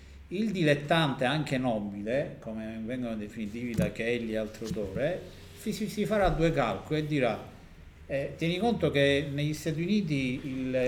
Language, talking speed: Italian, 145 wpm